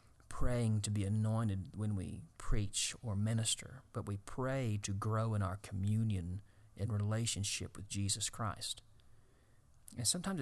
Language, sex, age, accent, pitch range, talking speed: English, male, 40-59, American, 105-120 Hz, 140 wpm